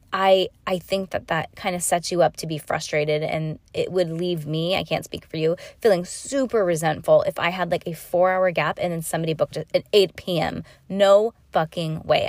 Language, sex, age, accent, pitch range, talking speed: English, female, 20-39, American, 160-190 Hz, 220 wpm